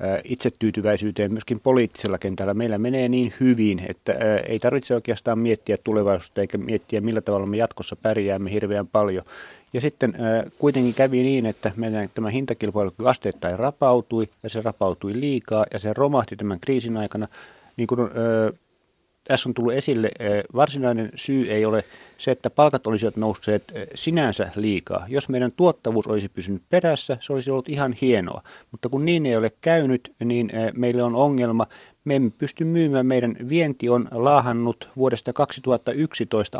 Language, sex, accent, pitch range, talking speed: Finnish, male, native, 110-130 Hz, 150 wpm